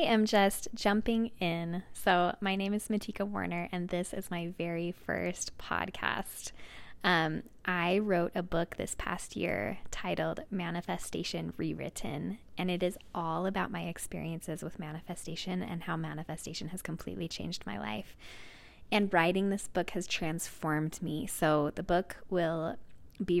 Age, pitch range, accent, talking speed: 10-29, 165-195 Hz, American, 150 wpm